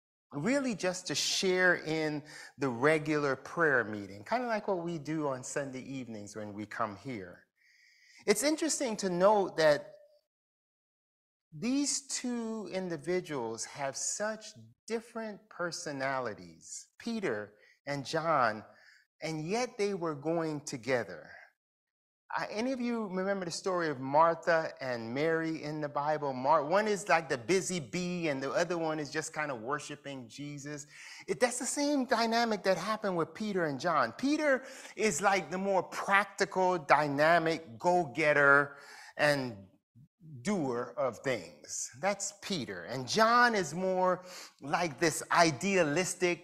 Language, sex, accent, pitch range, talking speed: English, male, American, 145-210 Hz, 135 wpm